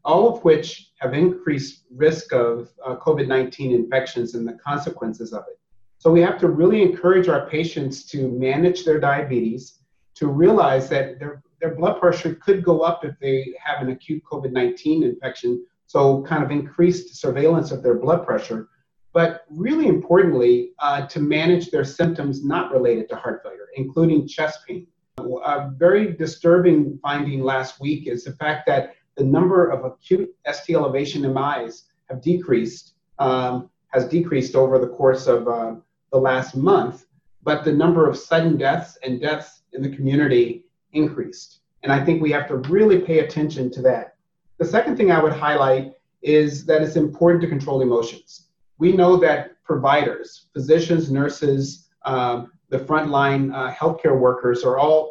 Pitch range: 130-170 Hz